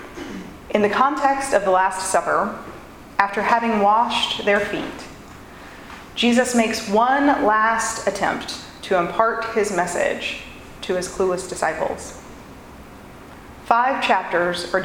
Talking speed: 115 wpm